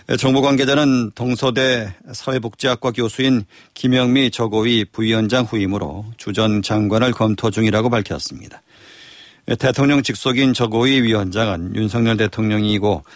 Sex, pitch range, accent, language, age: male, 105-130 Hz, native, Korean, 40-59